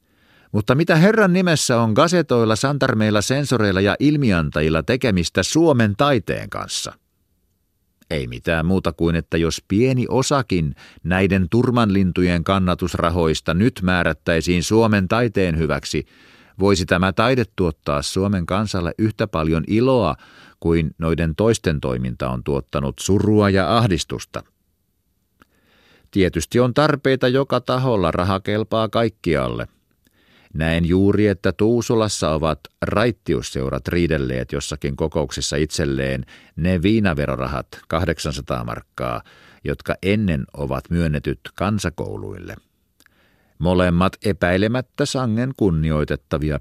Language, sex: Finnish, male